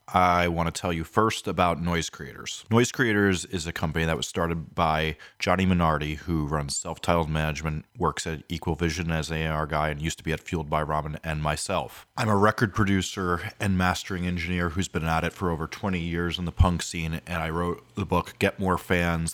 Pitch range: 80-90 Hz